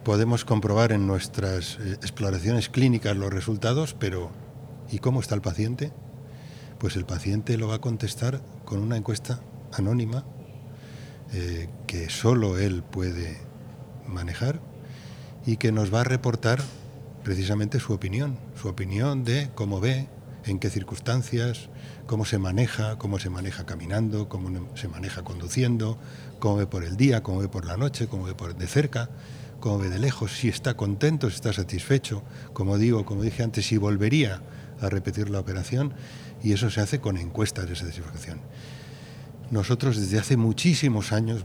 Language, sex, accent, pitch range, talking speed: English, male, Spanish, 100-130 Hz, 155 wpm